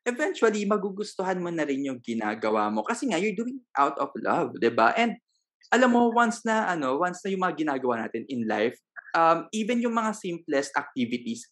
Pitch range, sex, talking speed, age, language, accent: 125-195 Hz, male, 200 wpm, 20-39, Filipino, native